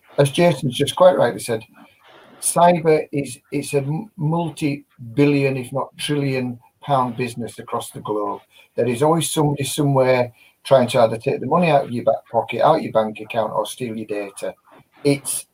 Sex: male